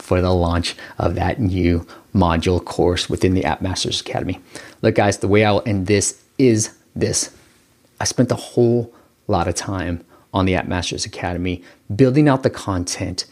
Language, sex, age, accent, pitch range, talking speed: English, male, 30-49, American, 95-135 Hz, 175 wpm